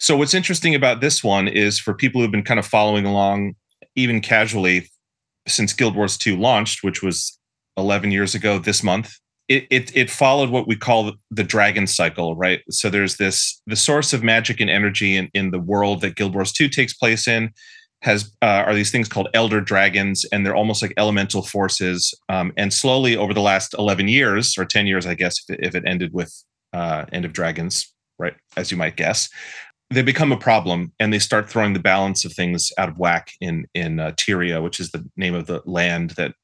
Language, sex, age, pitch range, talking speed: English, male, 30-49, 95-120 Hz, 210 wpm